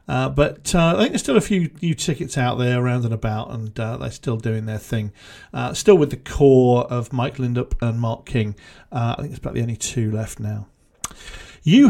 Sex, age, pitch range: male, 50-69, 120-155 Hz